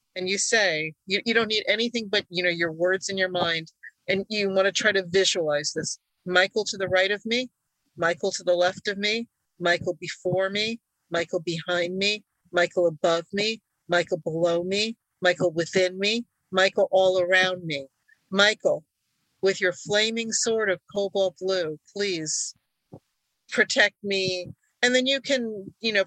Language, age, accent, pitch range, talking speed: English, 50-69, American, 175-220 Hz, 165 wpm